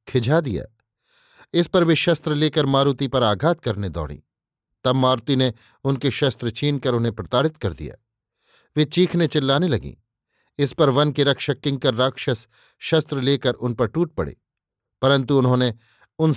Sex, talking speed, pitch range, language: male, 160 wpm, 120-150 Hz, Hindi